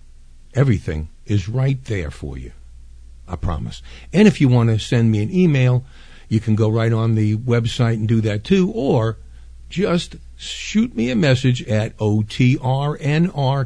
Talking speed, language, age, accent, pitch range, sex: 160 wpm, English, 50-69, American, 95-130 Hz, male